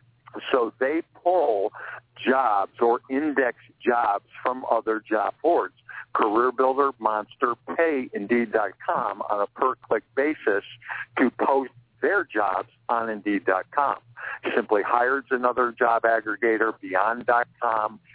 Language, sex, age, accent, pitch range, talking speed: English, male, 60-79, American, 115-145 Hz, 105 wpm